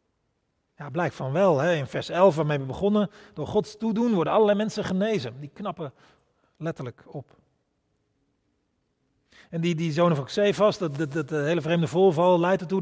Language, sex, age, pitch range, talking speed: Dutch, male, 40-59, 135-180 Hz, 170 wpm